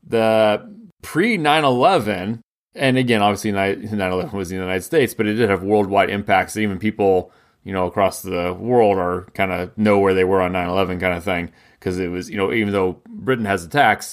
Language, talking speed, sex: English, 195 wpm, male